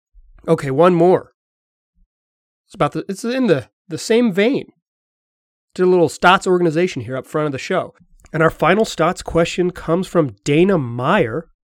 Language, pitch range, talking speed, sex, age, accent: English, 140-205 Hz, 165 wpm, male, 30-49, American